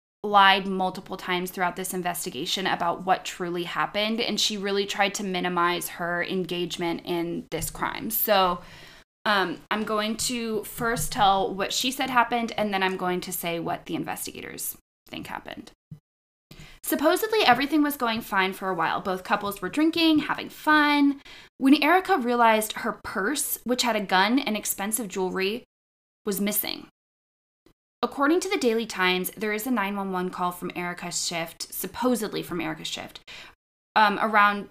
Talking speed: 155 wpm